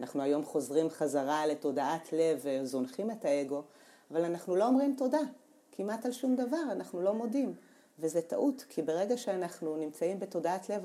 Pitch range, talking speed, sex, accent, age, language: 135-170 Hz, 160 wpm, female, native, 40-59, Hebrew